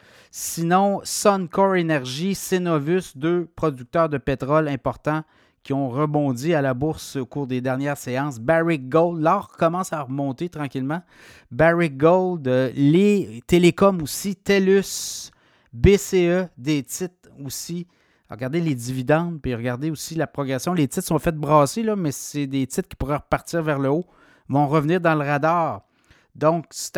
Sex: male